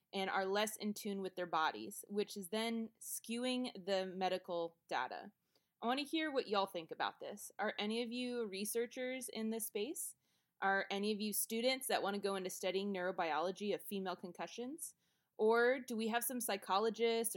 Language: English